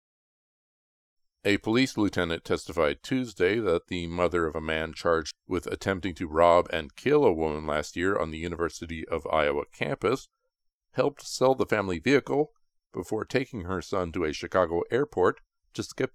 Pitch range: 85-110 Hz